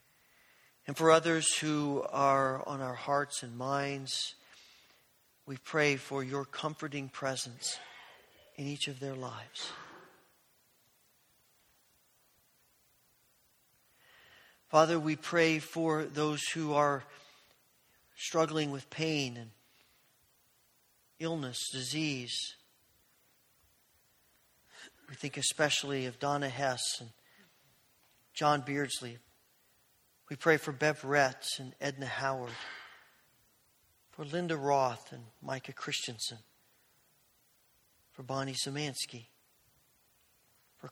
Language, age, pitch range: English, 40-59, 130-155 Hz